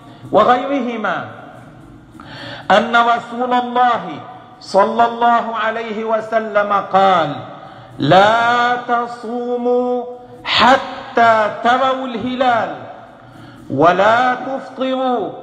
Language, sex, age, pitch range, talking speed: Arabic, male, 50-69, 215-260 Hz, 60 wpm